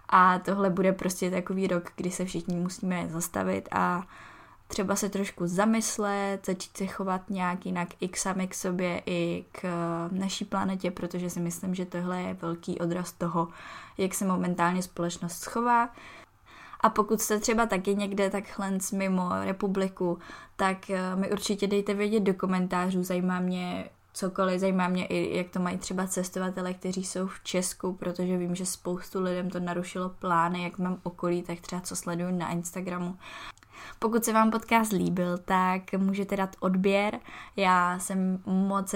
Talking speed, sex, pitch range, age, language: 160 wpm, female, 180-195 Hz, 20-39, Czech